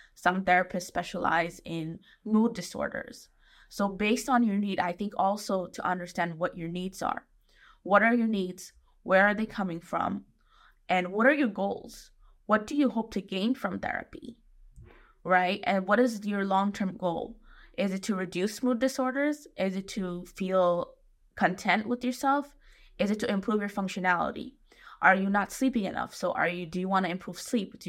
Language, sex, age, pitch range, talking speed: Bengali, female, 20-39, 180-220 Hz, 180 wpm